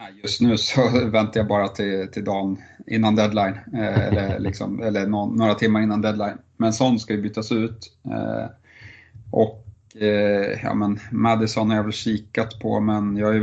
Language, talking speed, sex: Swedish, 180 wpm, male